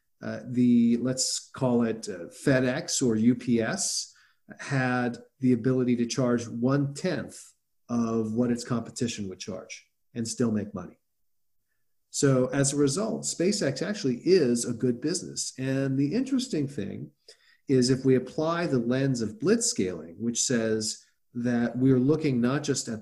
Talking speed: 145 wpm